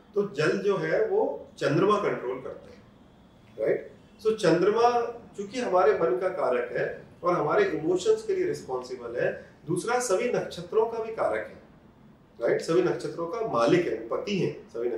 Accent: native